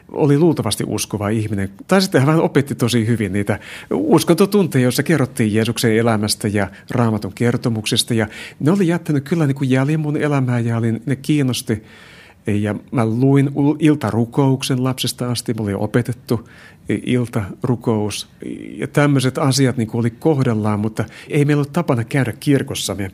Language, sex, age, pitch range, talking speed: Finnish, male, 60-79, 110-140 Hz, 150 wpm